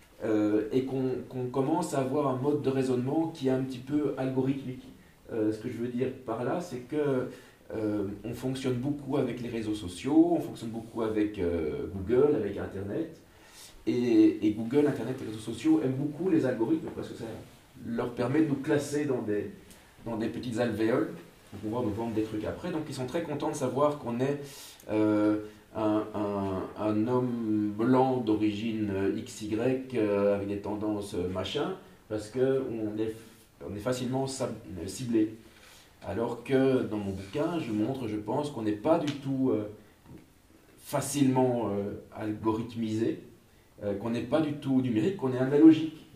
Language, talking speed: Dutch, 165 wpm